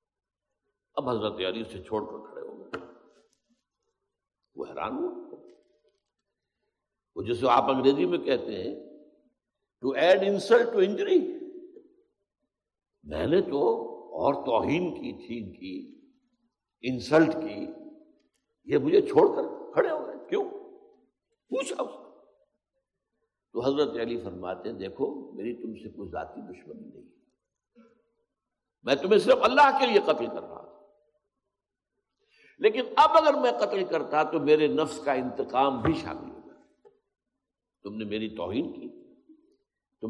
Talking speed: 125 wpm